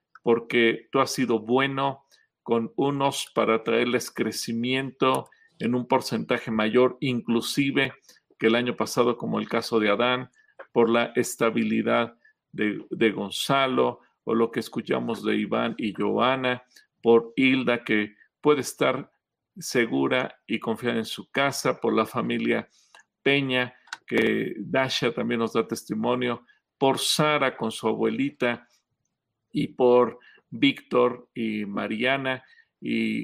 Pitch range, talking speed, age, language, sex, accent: 115-135 Hz, 125 wpm, 40-59, Spanish, male, Mexican